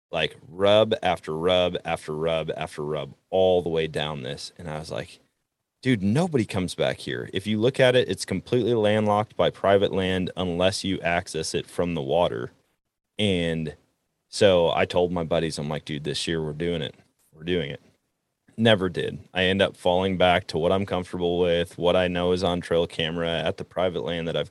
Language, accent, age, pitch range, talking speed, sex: English, American, 30-49, 80-95 Hz, 200 wpm, male